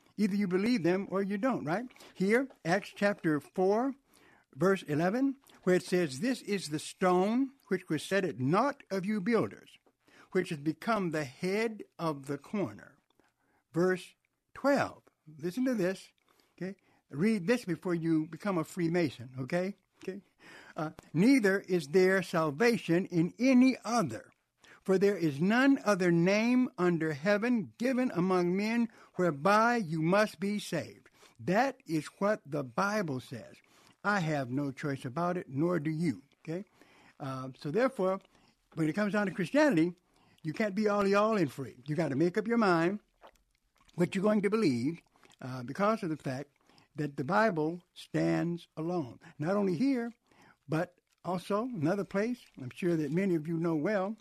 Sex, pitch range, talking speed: male, 155-210 Hz, 160 wpm